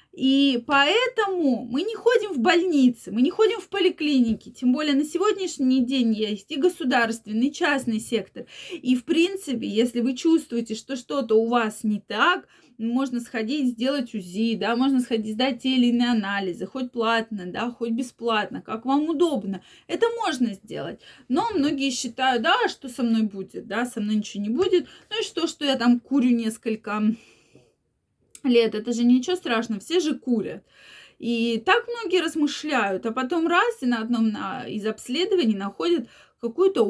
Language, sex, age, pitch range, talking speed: Russian, female, 20-39, 225-285 Hz, 165 wpm